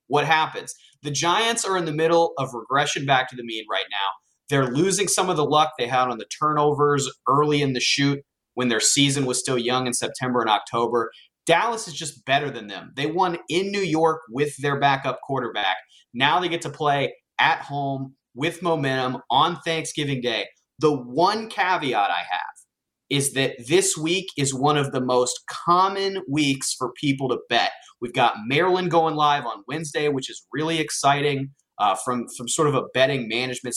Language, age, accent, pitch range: English, 30-49, American, 130-165 Hz